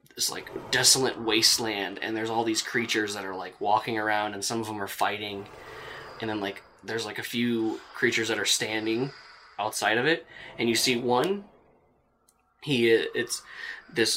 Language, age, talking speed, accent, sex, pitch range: English, 20-39, 175 wpm, American, male, 110-140 Hz